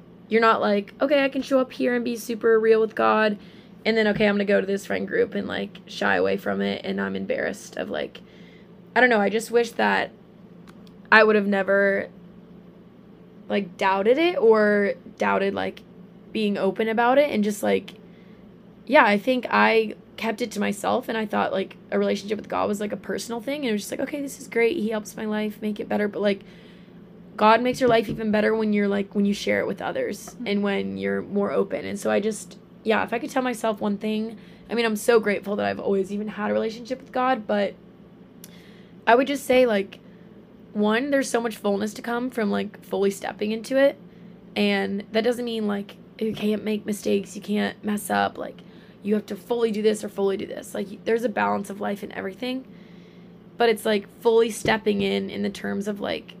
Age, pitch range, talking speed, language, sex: 20-39, 195-225 Hz, 220 wpm, English, female